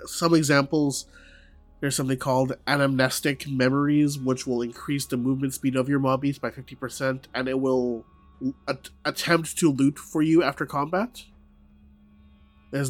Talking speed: 145 wpm